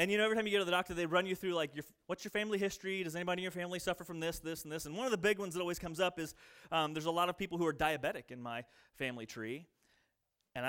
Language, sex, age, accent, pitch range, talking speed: English, male, 30-49, American, 165-240 Hz, 310 wpm